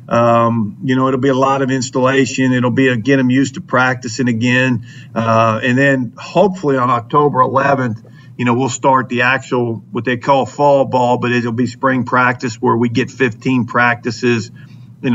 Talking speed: 185 wpm